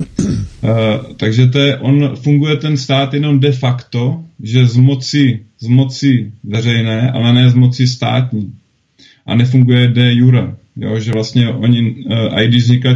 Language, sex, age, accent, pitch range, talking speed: Czech, male, 30-49, native, 120-130 Hz, 145 wpm